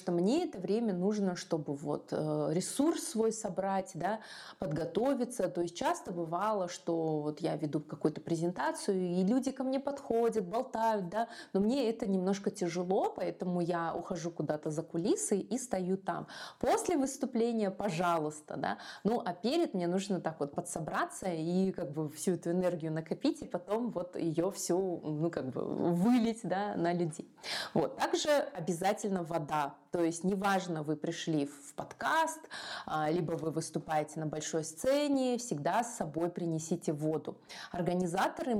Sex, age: female, 20-39